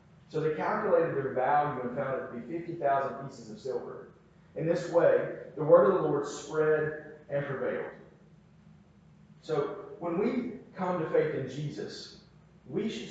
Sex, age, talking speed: male, 40-59, 160 wpm